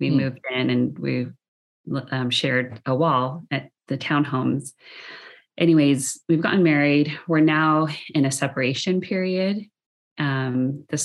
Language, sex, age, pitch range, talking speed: English, female, 30-49, 135-160 Hz, 130 wpm